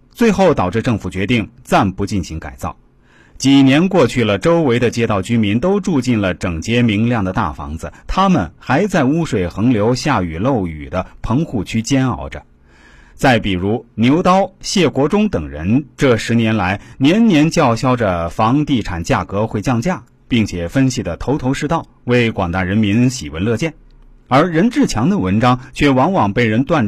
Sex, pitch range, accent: male, 95-145 Hz, native